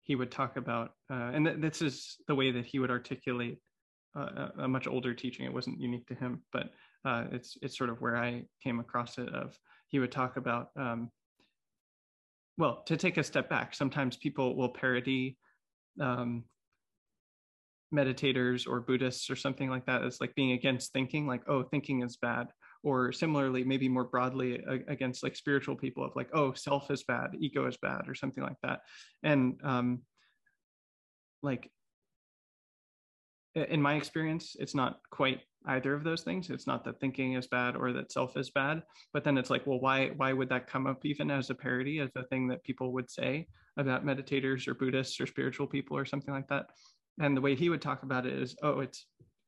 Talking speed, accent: 195 wpm, American